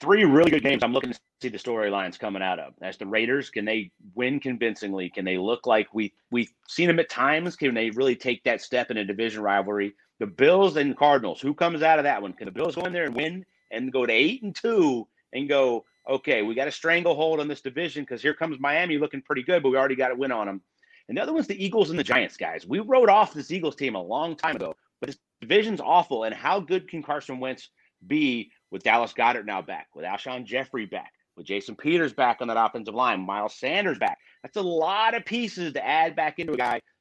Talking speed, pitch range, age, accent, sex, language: 245 wpm, 130-180 Hz, 30-49, American, male, English